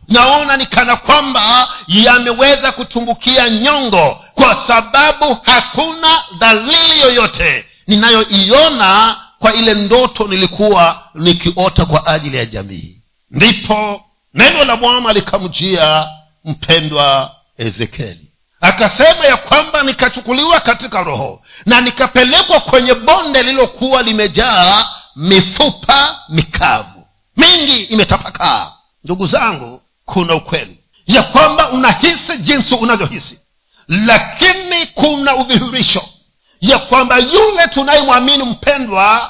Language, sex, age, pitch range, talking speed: Swahili, male, 50-69, 195-285 Hz, 95 wpm